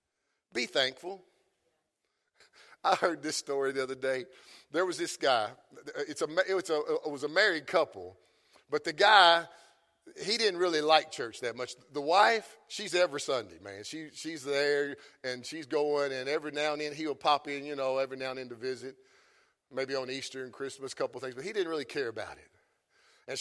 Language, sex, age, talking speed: English, male, 50-69, 200 wpm